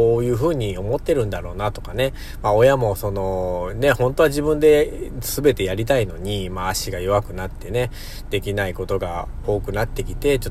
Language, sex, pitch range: Japanese, male, 95-125 Hz